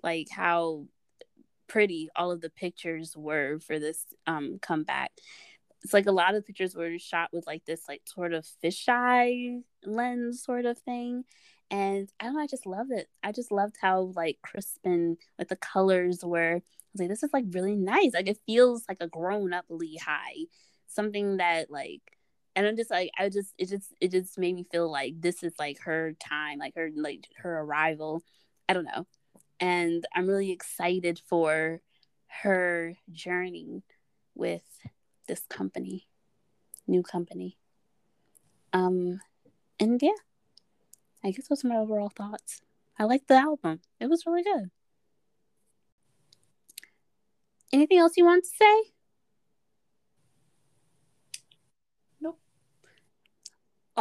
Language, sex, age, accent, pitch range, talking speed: English, female, 20-39, American, 170-245 Hz, 145 wpm